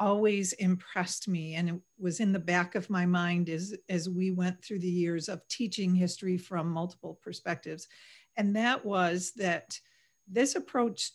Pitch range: 180-215 Hz